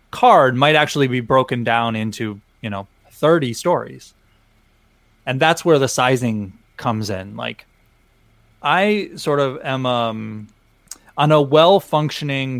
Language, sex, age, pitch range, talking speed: English, male, 20-39, 115-145 Hz, 130 wpm